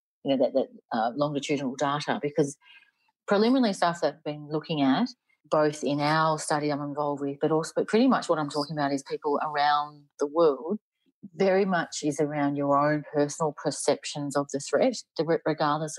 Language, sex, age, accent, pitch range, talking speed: English, female, 30-49, Australian, 145-170 Hz, 180 wpm